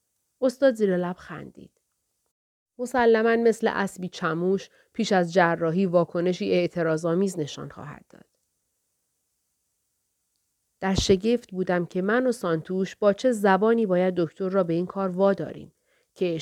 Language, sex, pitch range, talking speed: Persian, female, 180-230 Hz, 130 wpm